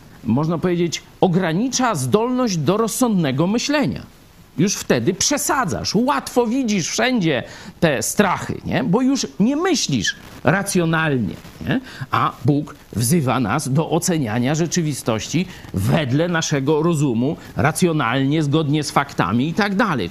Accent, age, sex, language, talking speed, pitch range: native, 50-69, male, Polish, 110 wpm, 130-215 Hz